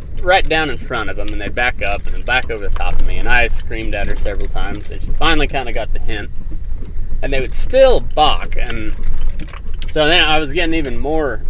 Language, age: English, 30-49